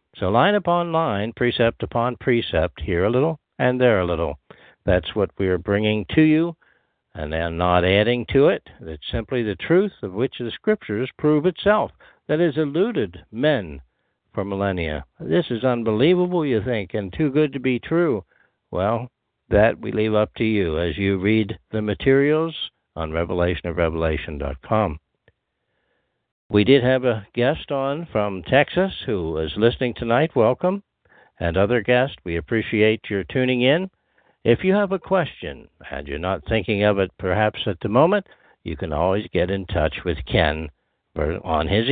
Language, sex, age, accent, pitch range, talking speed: English, male, 60-79, American, 90-135 Hz, 165 wpm